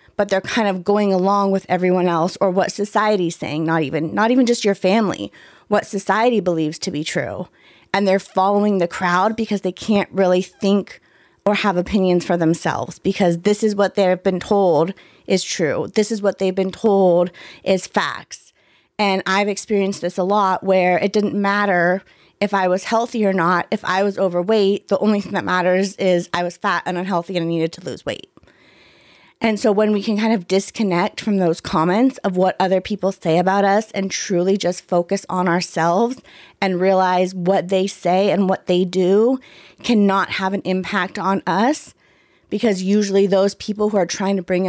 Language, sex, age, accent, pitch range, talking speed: English, female, 30-49, American, 180-205 Hz, 190 wpm